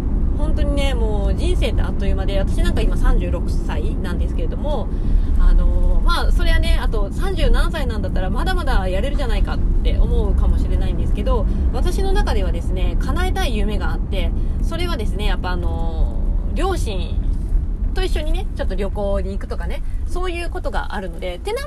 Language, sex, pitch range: Japanese, female, 70-90 Hz